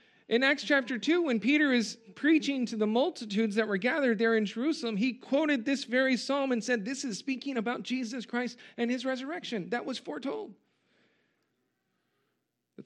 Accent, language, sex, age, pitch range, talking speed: American, English, male, 40-59, 195-250 Hz, 175 wpm